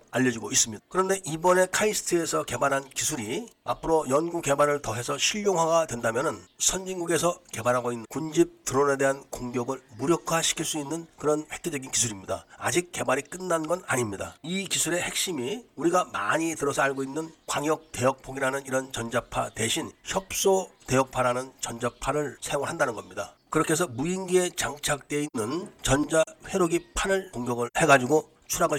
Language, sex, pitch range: Korean, male, 130-170 Hz